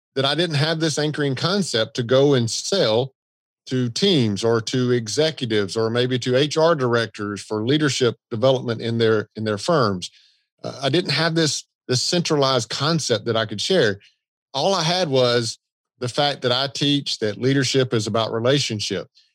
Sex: male